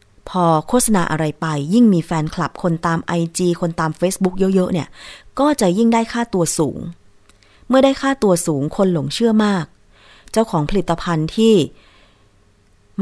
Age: 20-39